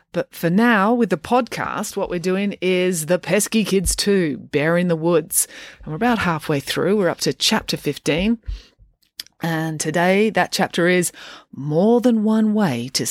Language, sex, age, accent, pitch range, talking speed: English, female, 30-49, Australian, 155-215 Hz, 170 wpm